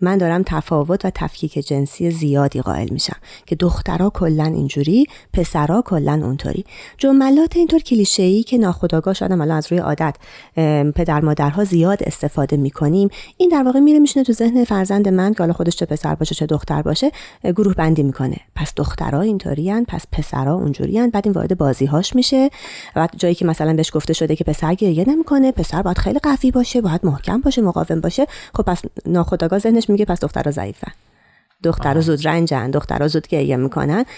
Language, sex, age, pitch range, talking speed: Persian, female, 30-49, 160-210 Hz, 170 wpm